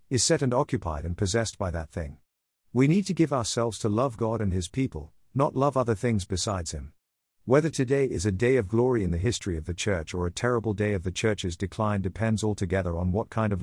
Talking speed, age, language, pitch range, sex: 235 wpm, 50-69, English, 90-125 Hz, male